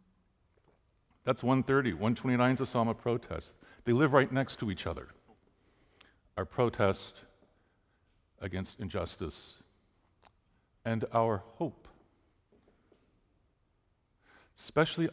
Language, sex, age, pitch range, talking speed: English, male, 50-69, 100-125 Hz, 90 wpm